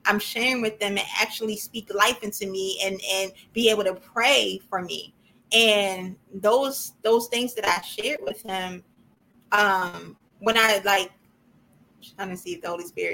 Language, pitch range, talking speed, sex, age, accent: English, 190-220 Hz, 175 wpm, female, 20-39, American